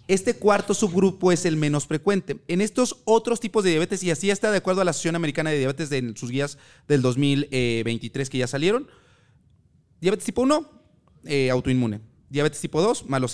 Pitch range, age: 135-180 Hz, 30-49